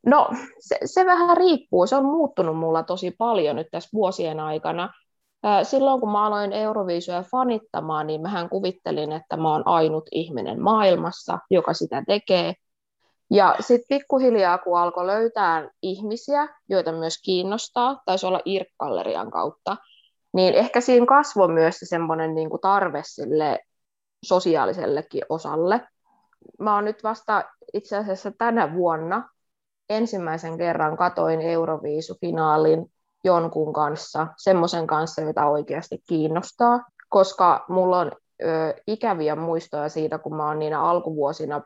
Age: 20-39